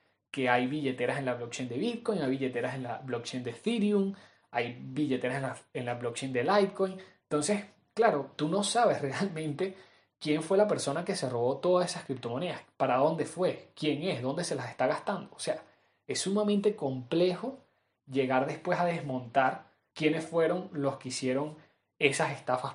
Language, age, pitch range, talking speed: Spanish, 20-39, 130-180 Hz, 170 wpm